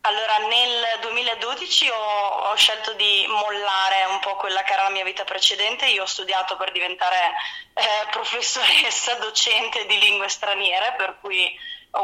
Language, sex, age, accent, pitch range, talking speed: Italian, female, 20-39, native, 195-235 Hz, 155 wpm